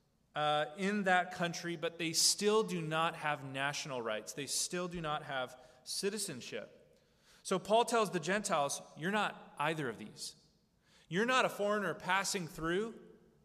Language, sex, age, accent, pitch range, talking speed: English, male, 30-49, American, 150-200 Hz, 150 wpm